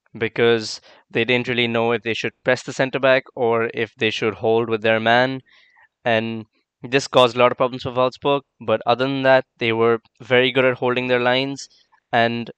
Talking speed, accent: 195 wpm, Indian